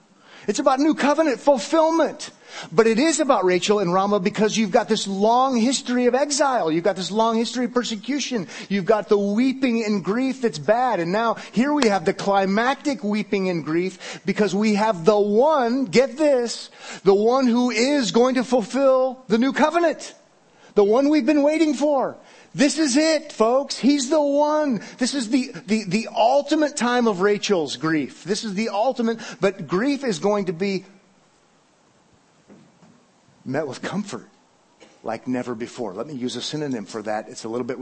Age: 30-49